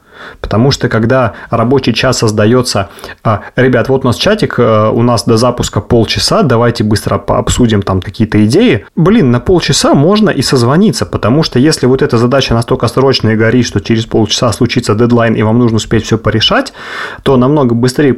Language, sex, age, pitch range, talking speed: Russian, male, 30-49, 105-130 Hz, 175 wpm